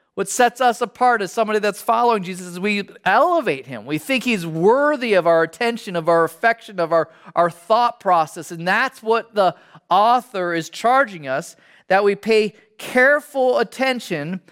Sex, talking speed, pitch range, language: male, 170 wpm, 165-210 Hz, English